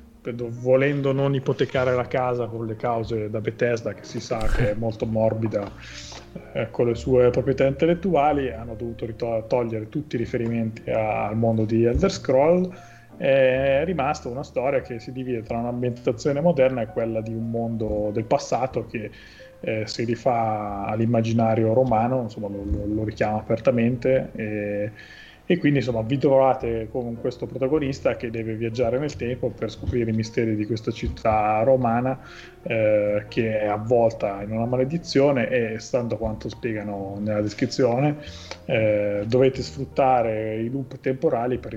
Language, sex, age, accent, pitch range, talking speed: Italian, male, 30-49, native, 110-130 Hz, 150 wpm